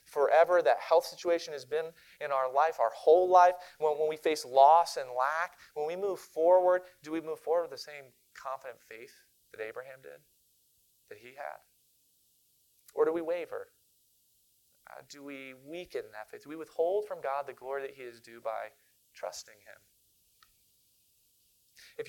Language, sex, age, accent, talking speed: English, male, 30-49, American, 170 wpm